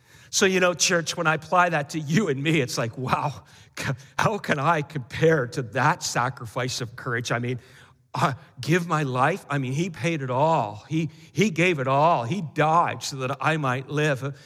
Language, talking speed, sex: English, 200 wpm, male